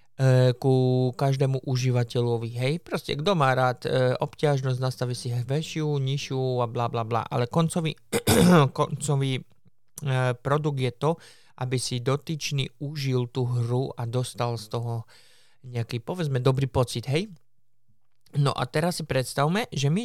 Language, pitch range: Slovak, 125-145 Hz